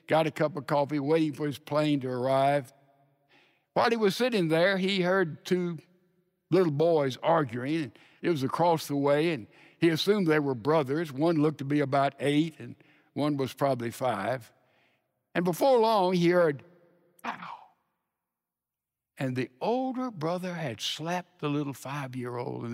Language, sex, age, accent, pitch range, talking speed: English, male, 60-79, American, 140-180 Hz, 160 wpm